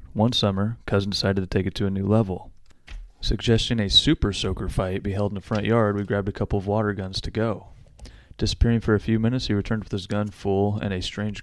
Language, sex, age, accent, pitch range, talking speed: English, male, 30-49, American, 95-110 Hz, 235 wpm